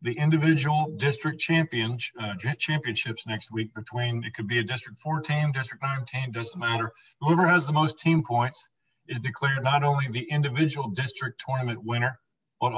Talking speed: 175 wpm